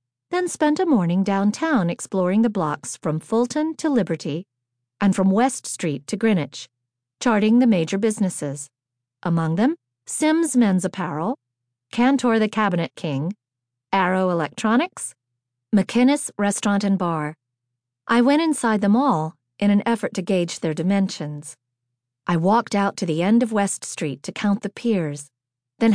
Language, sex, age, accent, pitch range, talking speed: English, female, 40-59, American, 150-220 Hz, 145 wpm